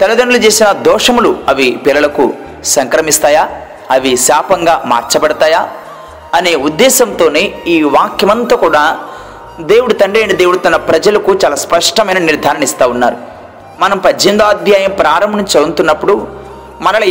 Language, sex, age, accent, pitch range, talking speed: Telugu, male, 30-49, native, 215-270 Hz, 105 wpm